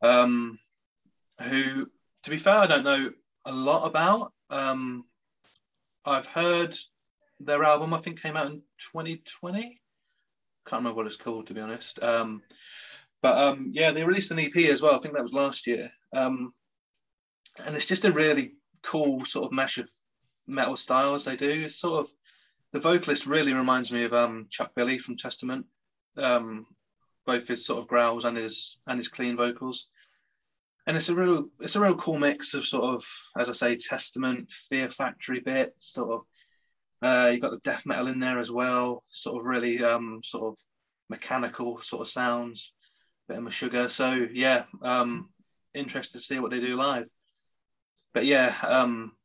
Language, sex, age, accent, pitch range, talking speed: English, male, 30-49, British, 120-155 Hz, 175 wpm